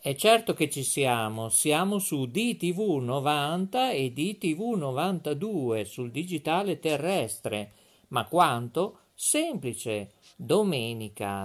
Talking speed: 105 wpm